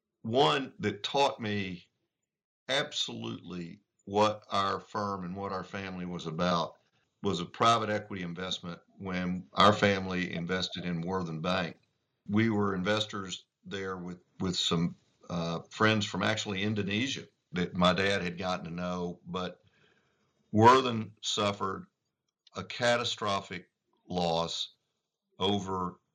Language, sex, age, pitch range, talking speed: English, male, 50-69, 90-105 Hz, 120 wpm